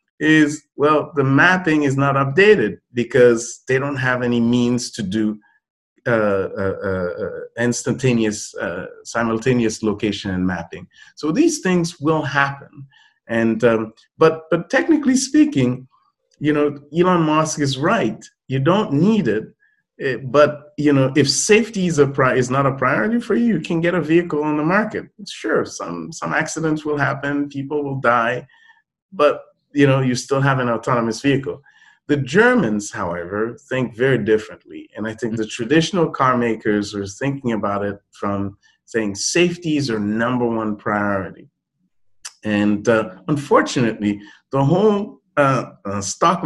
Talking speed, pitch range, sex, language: 150 wpm, 115-155 Hz, male, English